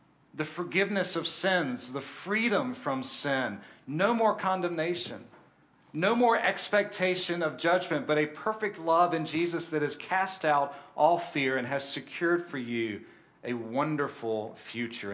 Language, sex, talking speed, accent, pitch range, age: English, male, 145 wpm, American, 125-170 Hz, 40-59